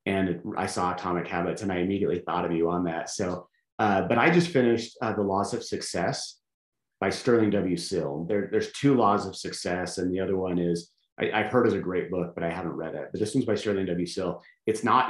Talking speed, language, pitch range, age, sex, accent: 240 wpm, English, 85-105 Hz, 30-49, male, American